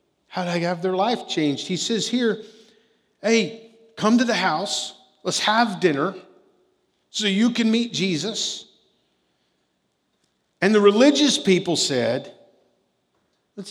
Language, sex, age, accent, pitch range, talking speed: English, male, 50-69, American, 145-215 Hz, 125 wpm